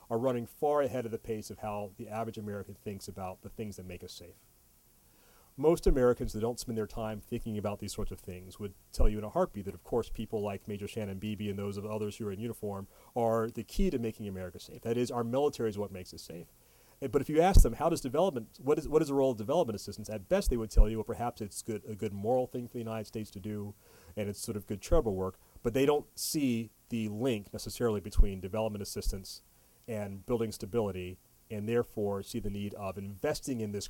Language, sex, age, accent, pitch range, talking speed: English, male, 30-49, American, 100-115 Hz, 245 wpm